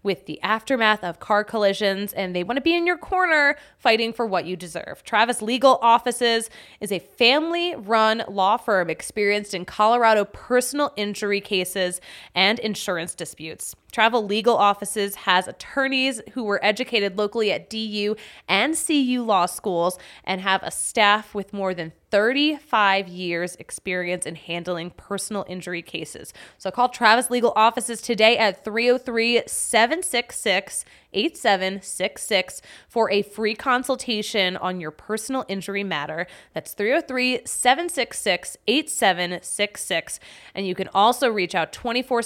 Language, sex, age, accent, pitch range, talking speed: English, female, 20-39, American, 190-240 Hz, 135 wpm